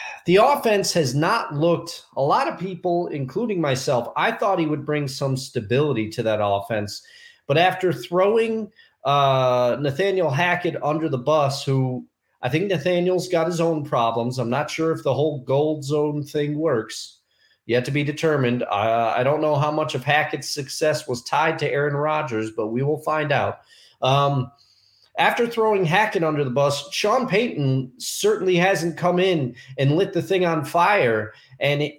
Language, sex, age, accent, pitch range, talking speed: English, male, 30-49, American, 135-185 Hz, 170 wpm